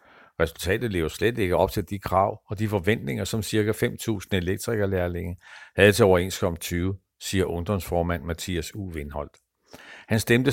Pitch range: 85-110 Hz